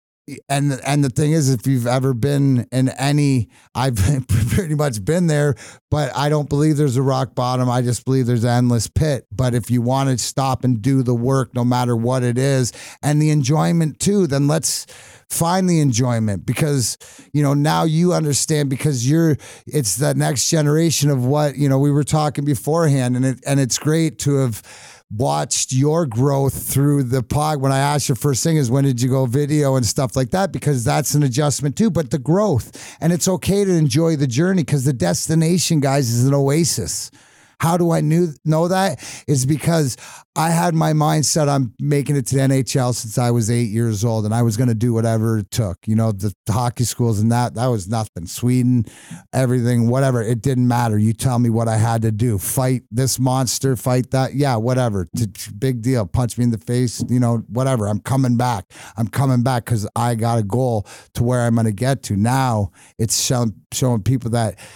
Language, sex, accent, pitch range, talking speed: English, male, American, 120-145 Hz, 210 wpm